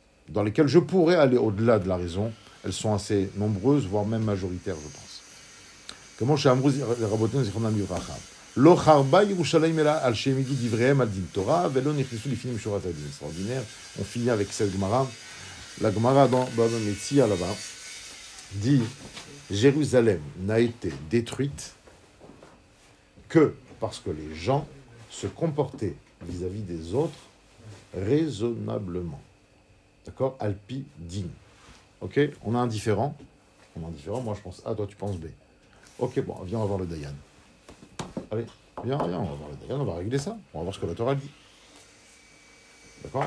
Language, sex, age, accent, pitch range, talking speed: French, male, 50-69, French, 95-135 Hz, 130 wpm